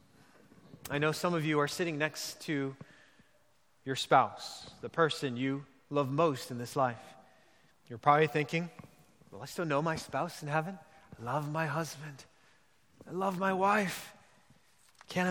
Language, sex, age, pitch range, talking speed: English, male, 30-49, 150-195 Hz, 155 wpm